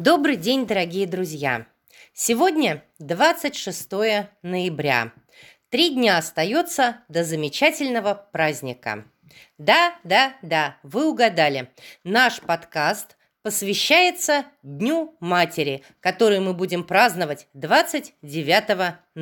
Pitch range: 160-245 Hz